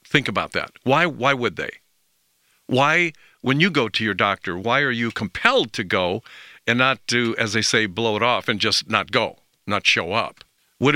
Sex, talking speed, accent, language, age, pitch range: male, 205 wpm, American, English, 50-69, 110-140 Hz